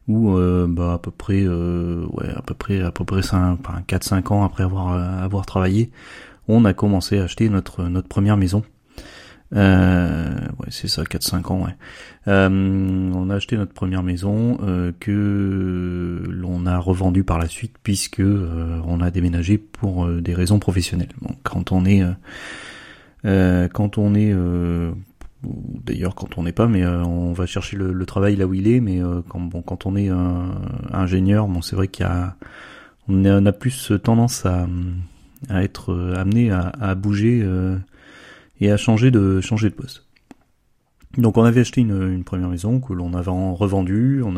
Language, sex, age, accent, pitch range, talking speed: French, male, 30-49, French, 90-105 Hz, 190 wpm